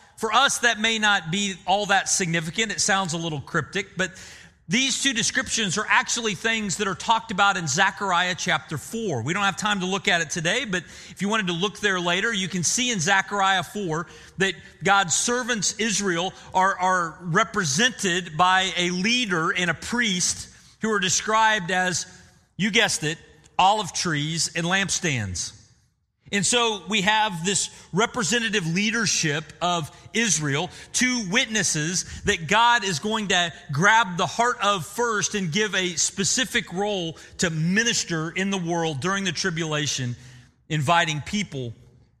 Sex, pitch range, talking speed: male, 165-210 Hz, 160 wpm